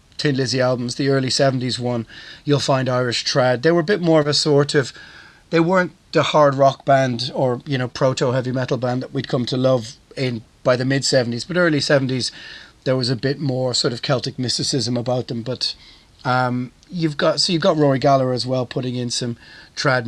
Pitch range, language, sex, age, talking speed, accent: 125-150 Hz, English, male, 30-49, 215 wpm, British